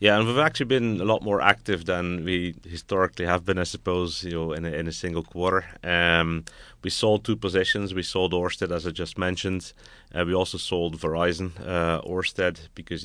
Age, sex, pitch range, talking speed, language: 30-49, male, 80-95 Hz, 200 wpm, English